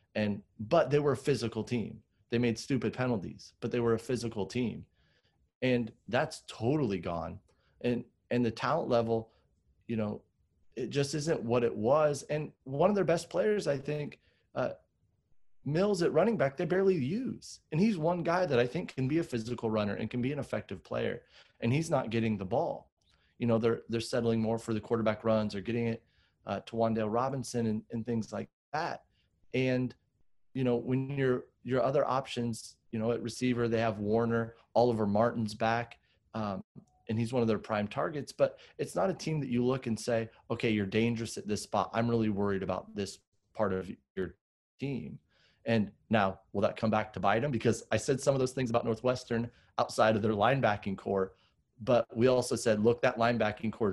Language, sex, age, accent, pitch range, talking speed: English, male, 30-49, American, 110-125 Hz, 200 wpm